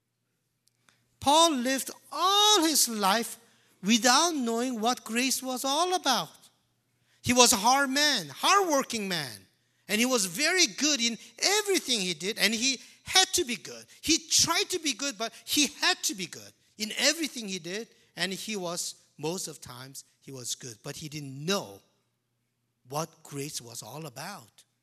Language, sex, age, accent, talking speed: English, male, 50-69, Japanese, 160 wpm